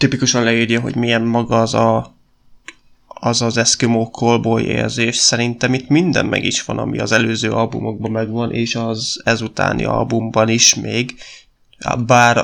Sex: male